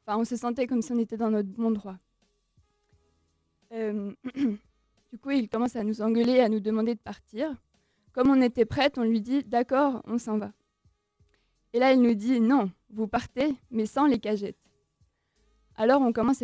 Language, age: French, 20-39